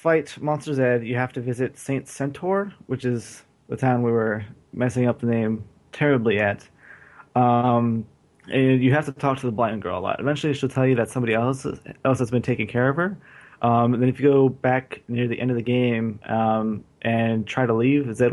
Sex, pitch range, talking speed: male, 115-130 Hz, 215 wpm